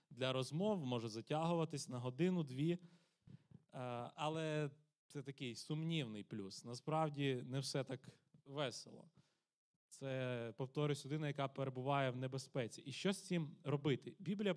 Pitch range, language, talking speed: 130-165 Hz, Ukrainian, 120 wpm